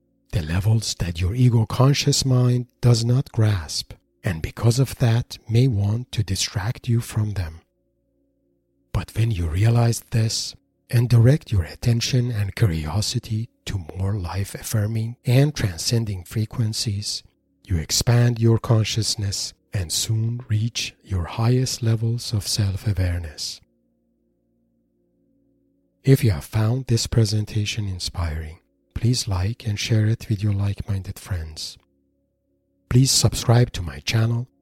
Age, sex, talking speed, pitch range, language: 50-69, male, 120 wpm, 90-115 Hz, English